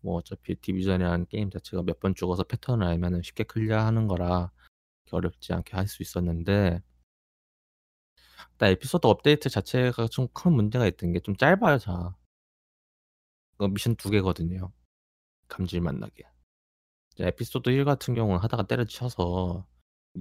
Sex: male